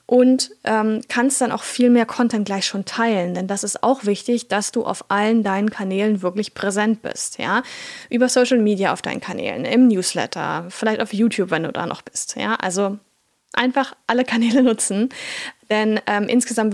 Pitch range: 205-245 Hz